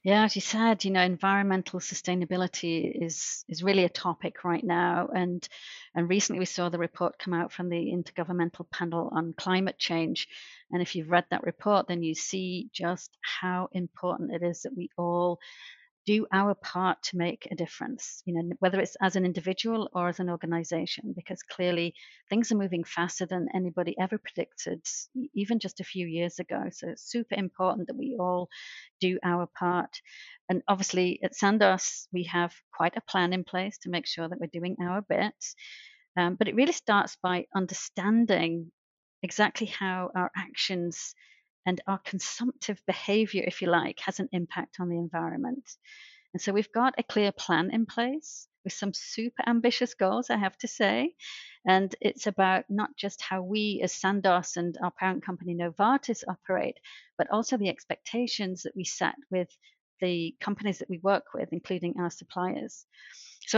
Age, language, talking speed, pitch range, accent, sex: 40-59, English, 175 wpm, 175-210 Hz, British, female